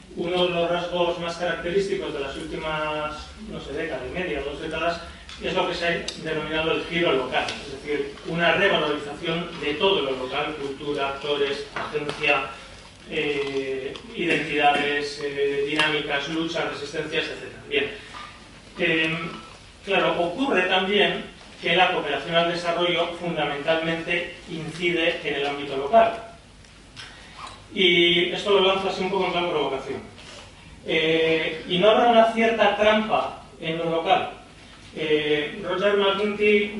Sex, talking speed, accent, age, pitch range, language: male, 135 wpm, Spanish, 30-49, 145-180 Hz, Spanish